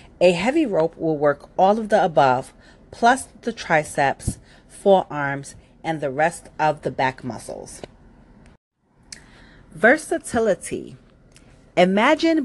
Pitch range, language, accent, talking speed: 150-210 Hz, English, American, 105 wpm